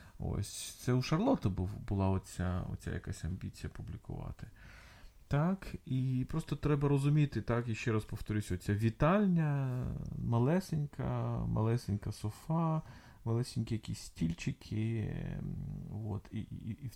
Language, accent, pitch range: Ukrainian, native, 105-135 Hz